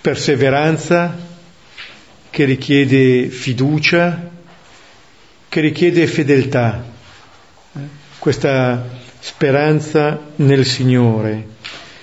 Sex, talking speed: male, 55 wpm